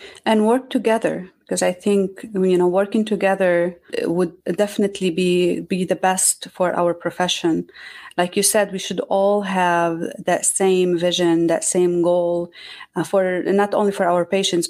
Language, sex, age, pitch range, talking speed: English, female, 30-49, 170-195 Hz, 155 wpm